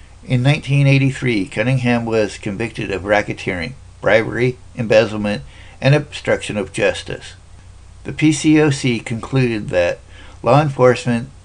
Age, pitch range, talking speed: 60-79, 100-130 Hz, 100 wpm